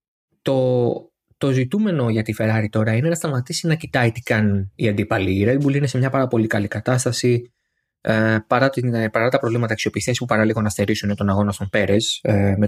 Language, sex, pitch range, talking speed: Greek, male, 105-130 Hz, 200 wpm